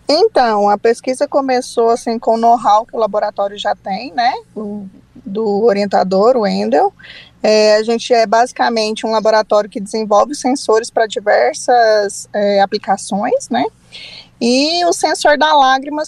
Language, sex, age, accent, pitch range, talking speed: Portuguese, female, 20-39, Brazilian, 220-275 Hz, 135 wpm